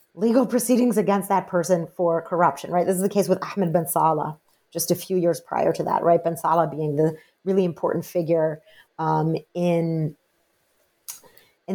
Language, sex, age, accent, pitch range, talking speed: English, female, 30-49, American, 165-195 Hz, 175 wpm